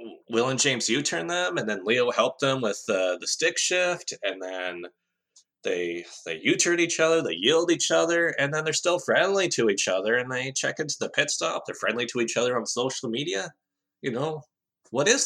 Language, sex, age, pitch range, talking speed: English, male, 20-39, 100-145 Hz, 210 wpm